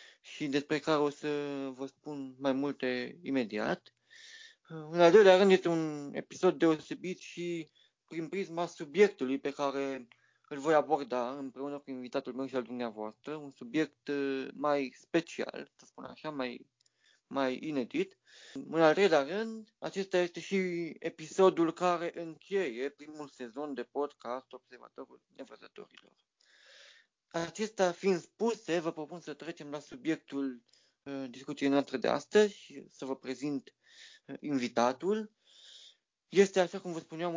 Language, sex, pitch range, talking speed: Romanian, male, 140-180 Hz, 135 wpm